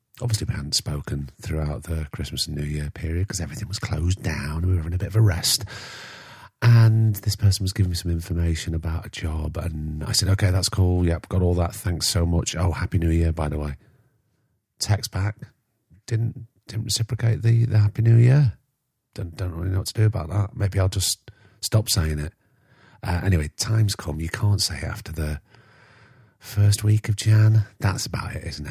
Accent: British